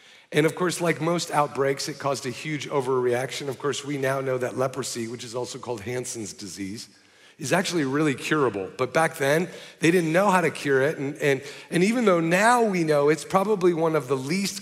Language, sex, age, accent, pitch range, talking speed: English, male, 40-59, American, 130-160 Hz, 215 wpm